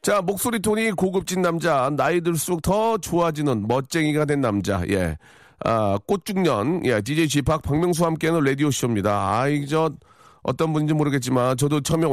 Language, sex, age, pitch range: Korean, male, 40-59, 110-155 Hz